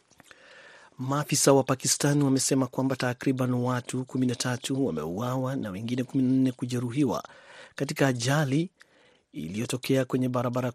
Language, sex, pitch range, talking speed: Swahili, male, 120-140 Hz, 95 wpm